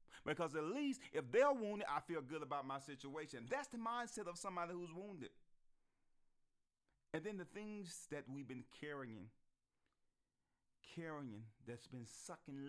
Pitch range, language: 115-160 Hz, English